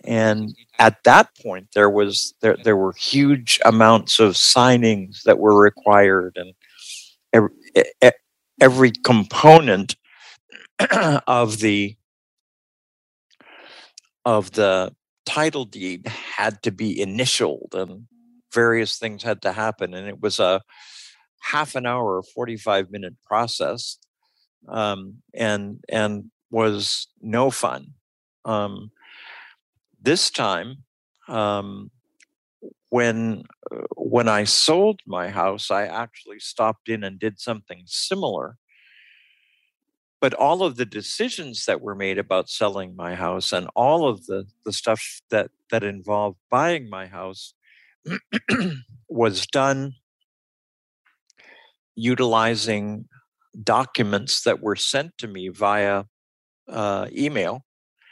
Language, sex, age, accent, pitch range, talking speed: English, male, 50-69, American, 100-125 Hz, 110 wpm